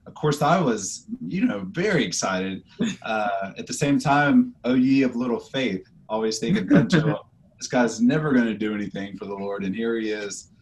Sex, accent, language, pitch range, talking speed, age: male, American, English, 100-125 Hz, 190 wpm, 30-49